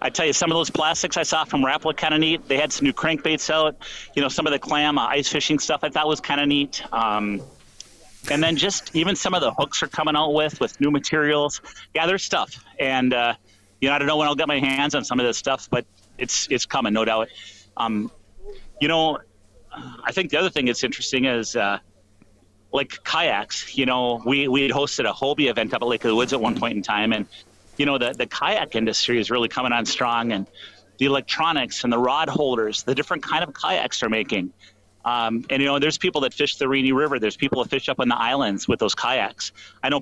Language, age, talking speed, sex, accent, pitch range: English, 40-59, 240 wpm, male, American, 115-150 Hz